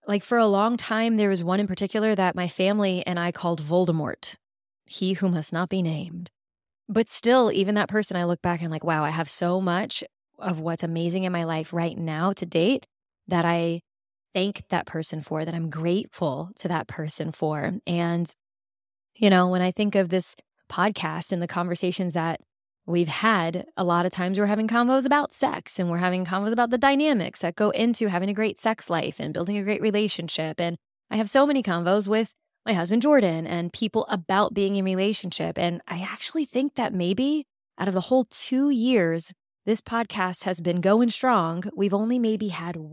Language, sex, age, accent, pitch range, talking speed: English, female, 20-39, American, 175-215 Hz, 200 wpm